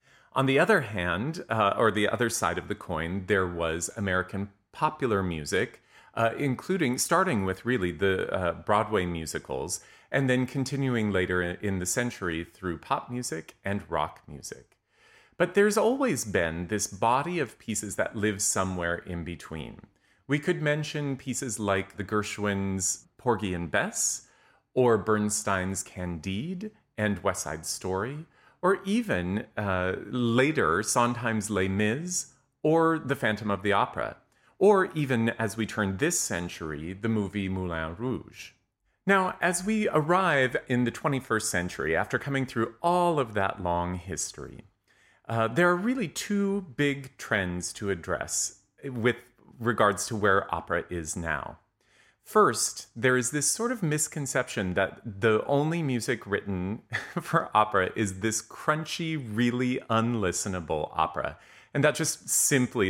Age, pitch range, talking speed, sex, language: 30-49, 95-140 Hz, 140 wpm, male, English